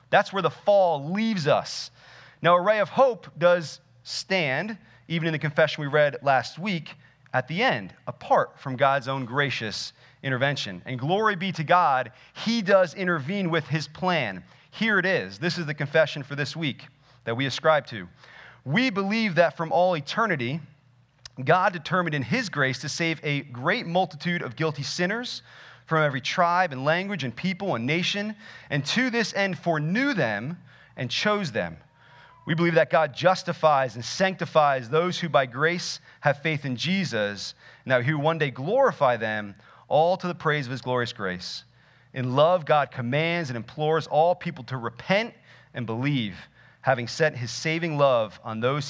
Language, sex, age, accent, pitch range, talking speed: English, male, 30-49, American, 130-175 Hz, 175 wpm